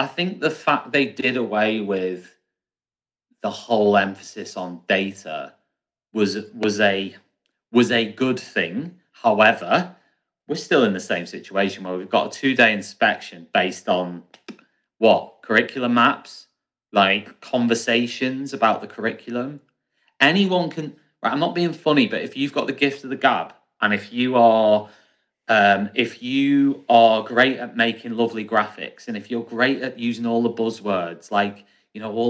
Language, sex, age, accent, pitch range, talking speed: English, male, 30-49, British, 105-140 Hz, 150 wpm